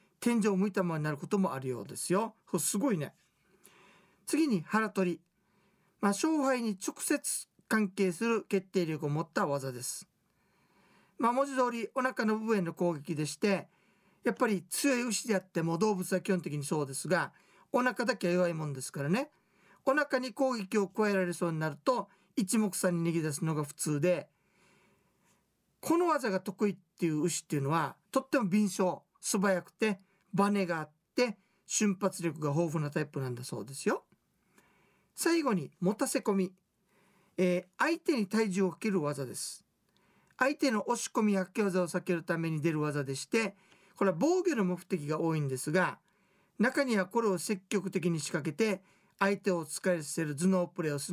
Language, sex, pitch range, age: Japanese, male, 175-215 Hz, 40-59